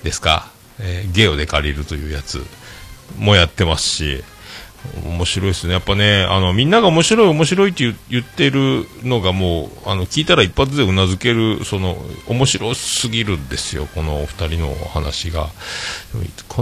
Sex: male